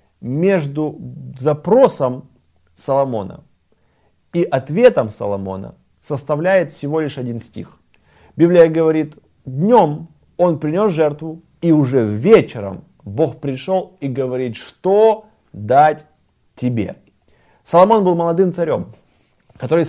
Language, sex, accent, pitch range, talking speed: Russian, male, native, 145-185 Hz, 95 wpm